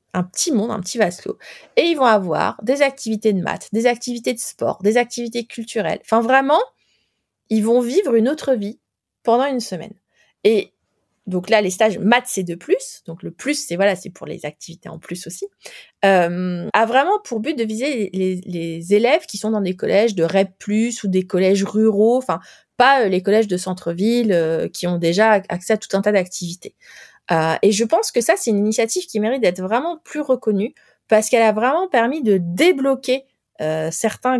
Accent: French